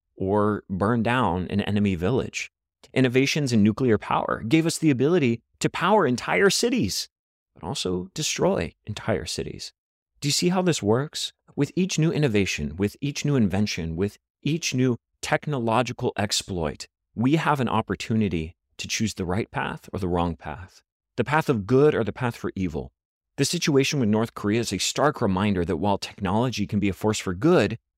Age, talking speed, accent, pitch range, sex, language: 30-49, 175 wpm, American, 95-140 Hz, male, English